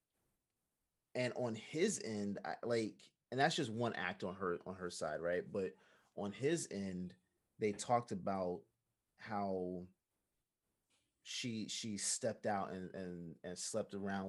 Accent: American